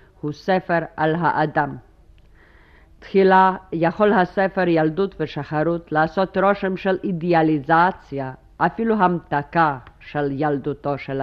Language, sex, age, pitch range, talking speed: Hebrew, female, 50-69, 140-180 Hz, 95 wpm